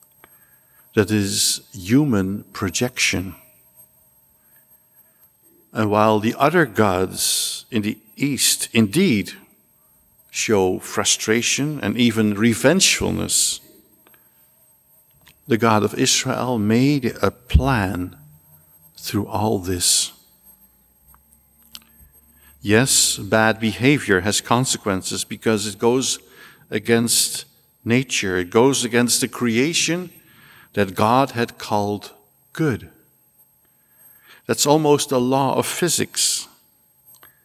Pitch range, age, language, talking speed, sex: 90-125 Hz, 60-79, English, 85 wpm, male